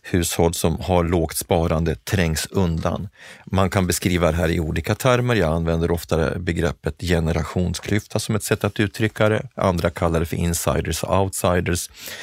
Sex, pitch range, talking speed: male, 85-105 Hz, 160 wpm